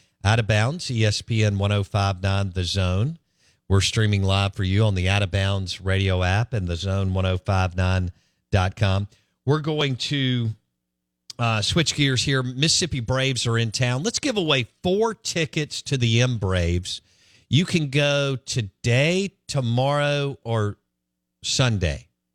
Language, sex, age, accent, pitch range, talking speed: English, male, 50-69, American, 95-130 Hz, 130 wpm